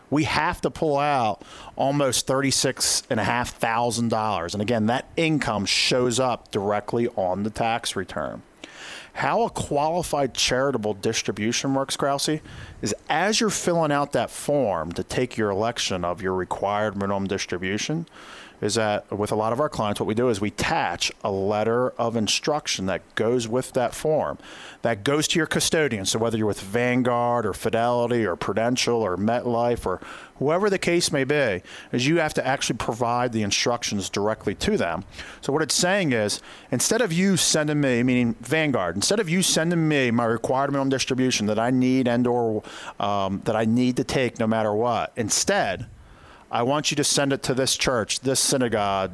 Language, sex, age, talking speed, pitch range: English, male, 40-59, 175 wpm, 110-140 Hz